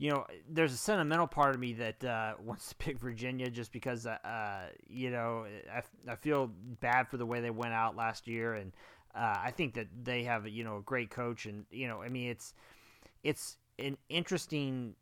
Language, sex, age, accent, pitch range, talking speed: English, male, 30-49, American, 110-130 Hz, 210 wpm